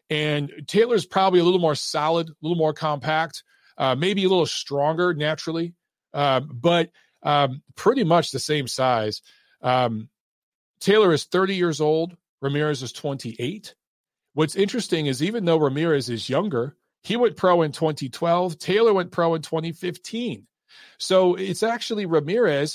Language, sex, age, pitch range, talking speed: English, male, 40-59, 140-170 Hz, 150 wpm